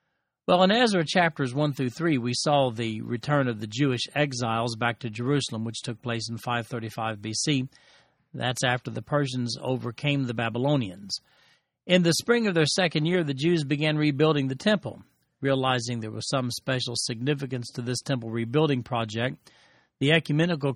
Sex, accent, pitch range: male, American, 125-155 Hz